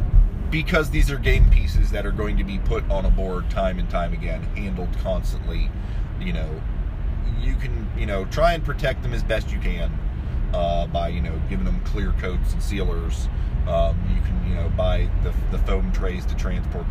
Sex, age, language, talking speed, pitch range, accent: male, 30-49, English, 200 wpm, 75-100 Hz, American